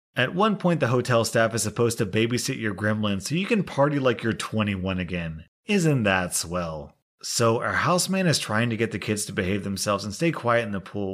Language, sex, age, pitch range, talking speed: English, male, 30-49, 100-130 Hz, 220 wpm